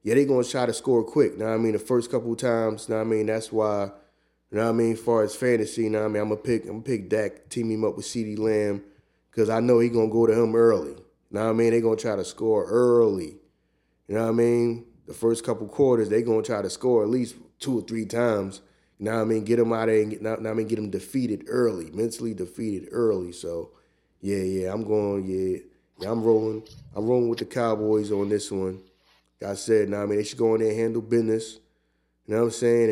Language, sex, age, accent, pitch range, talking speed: English, male, 30-49, American, 105-115 Hz, 265 wpm